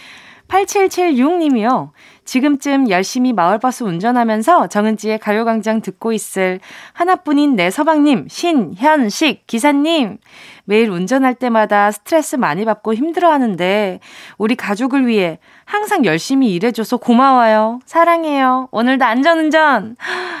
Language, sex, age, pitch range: Korean, female, 20-39, 195-295 Hz